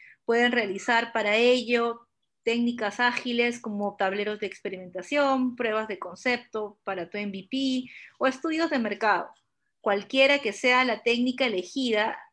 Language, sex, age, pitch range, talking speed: Spanish, female, 30-49, 215-270 Hz, 125 wpm